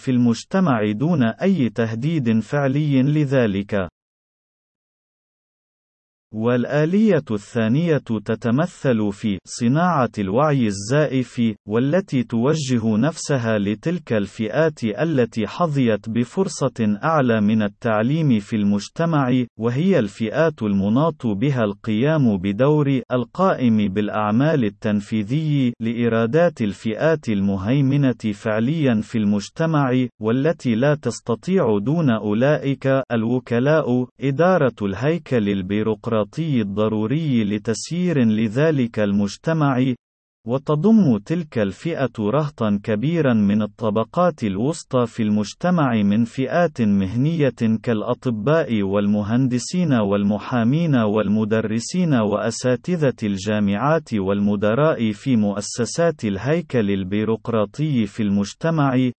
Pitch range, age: 105-145 Hz, 40-59